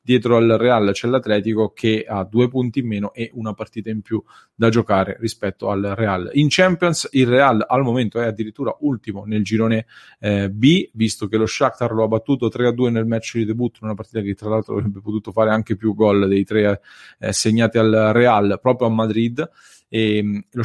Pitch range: 110-125 Hz